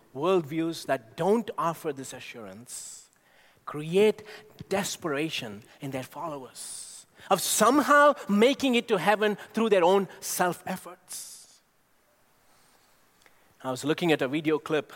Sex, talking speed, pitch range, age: male, 110 wpm, 145-195 Hz, 30-49